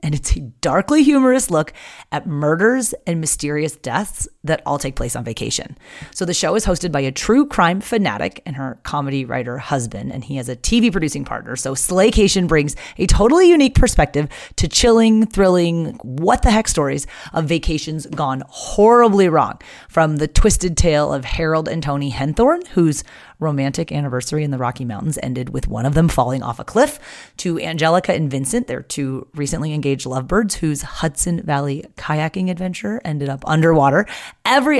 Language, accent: English, American